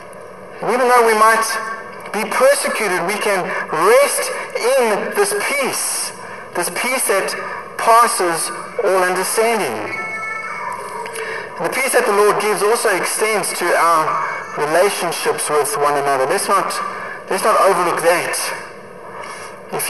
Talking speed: 115 wpm